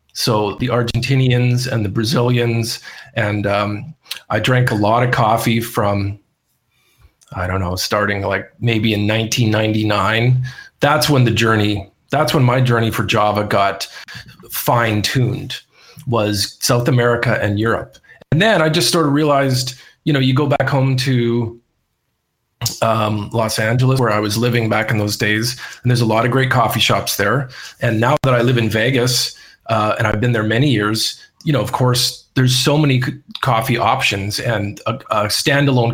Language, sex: English, male